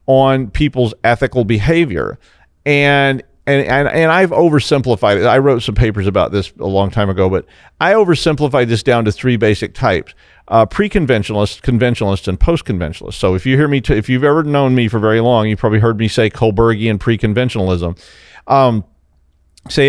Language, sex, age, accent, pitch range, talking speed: English, male, 40-59, American, 100-135 Hz, 175 wpm